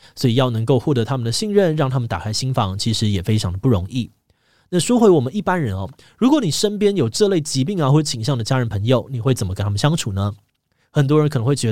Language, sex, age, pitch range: Chinese, male, 20-39, 115-155 Hz